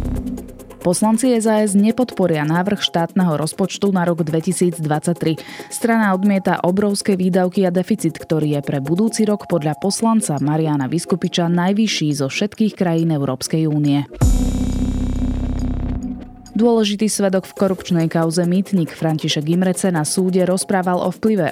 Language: Slovak